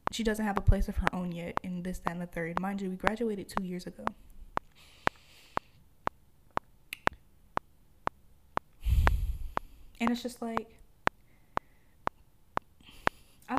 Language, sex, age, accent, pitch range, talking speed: English, female, 10-29, American, 180-215 Hz, 120 wpm